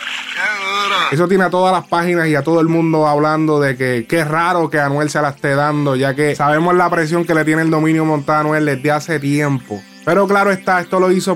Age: 20-39